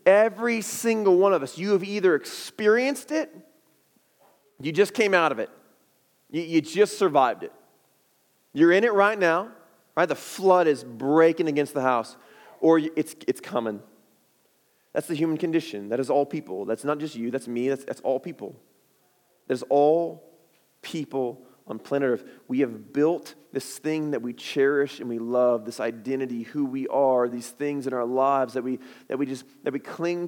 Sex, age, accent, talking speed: male, 30-49, American, 180 wpm